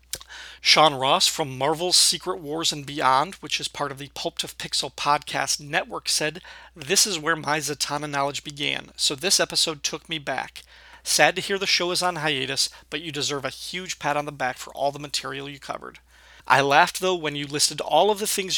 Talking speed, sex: 210 wpm, male